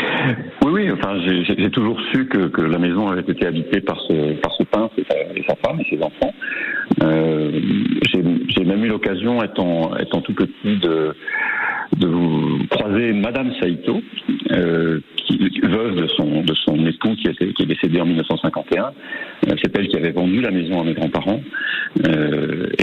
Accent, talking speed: French, 175 wpm